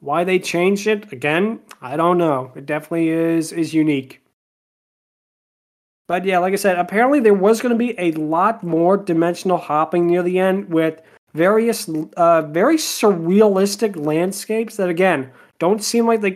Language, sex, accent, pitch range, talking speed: English, male, American, 165-205 Hz, 160 wpm